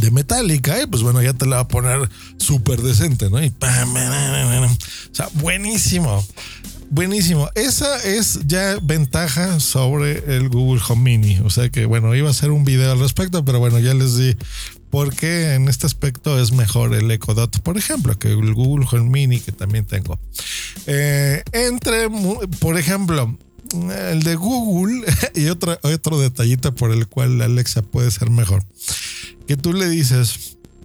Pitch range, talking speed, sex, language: 115-155 Hz, 175 wpm, male, Spanish